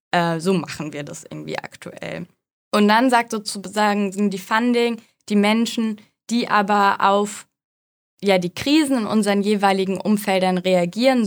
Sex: female